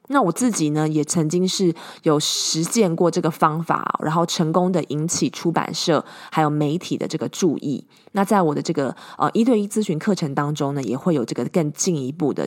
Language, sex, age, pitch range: Chinese, female, 20-39, 150-185 Hz